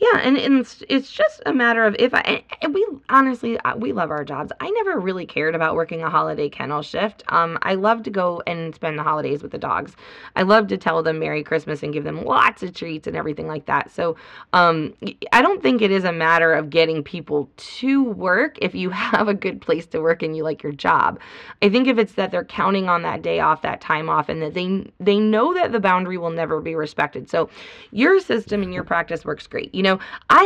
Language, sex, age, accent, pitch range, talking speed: English, female, 20-39, American, 155-215 Hz, 240 wpm